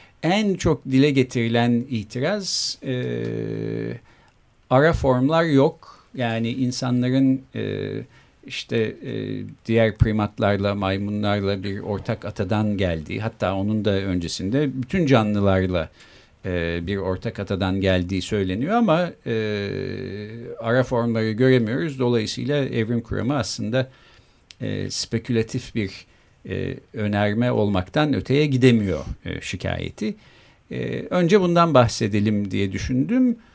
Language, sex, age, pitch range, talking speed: Turkish, male, 50-69, 100-130 Hz, 105 wpm